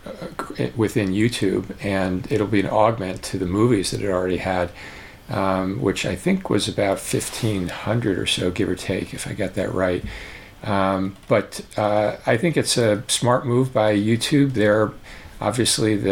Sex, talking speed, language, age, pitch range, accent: male, 170 wpm, English, 50-69, 95-110 Hz, American